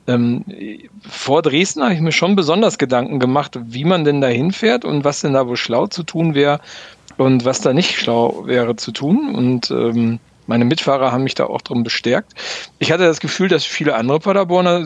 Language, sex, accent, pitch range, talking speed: German, male, German, 130-165 Hz, 200 wpm